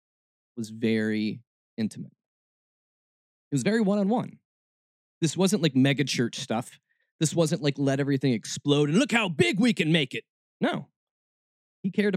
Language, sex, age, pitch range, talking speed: English, male, 20-39, 110-155 Hz, 150 wpm